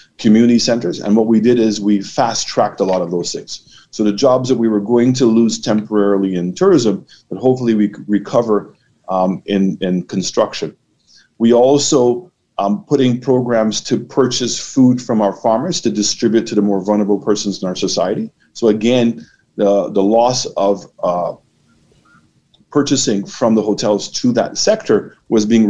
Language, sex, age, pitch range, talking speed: English, male, 40-59, 100-115 Hz, 170 wpm